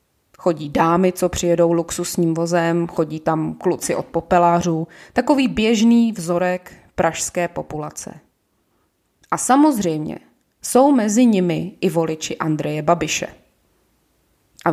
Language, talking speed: Czech, 105 wpm